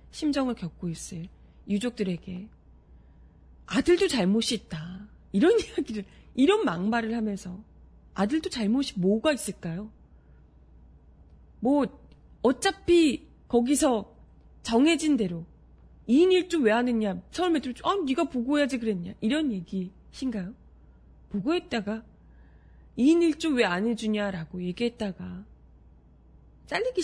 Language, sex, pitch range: Korean, female, 180-265 Hz